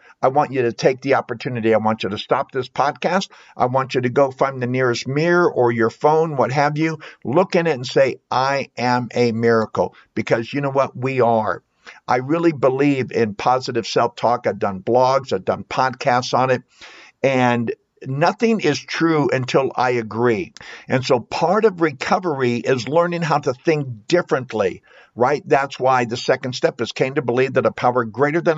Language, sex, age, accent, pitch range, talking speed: English, male, 60-79, American, 125-155 Hz, 195 wpm